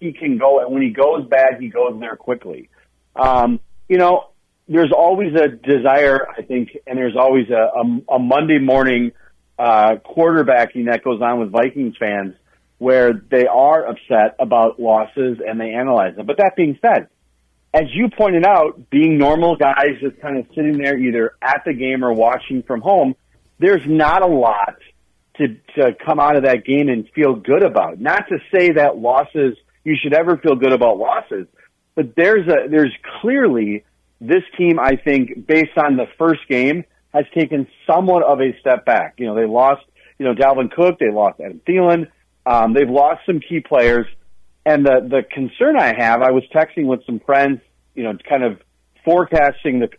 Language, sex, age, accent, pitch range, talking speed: English, male, 40-59, American, 120-155 Hz, 185 wpm